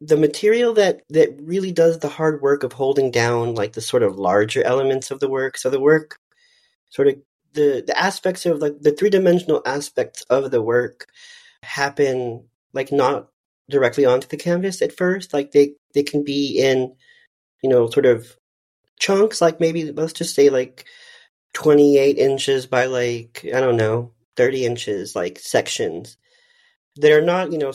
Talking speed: 175 wpm